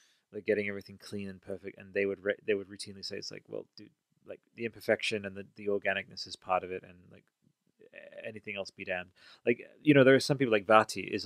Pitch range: 95-110 Hz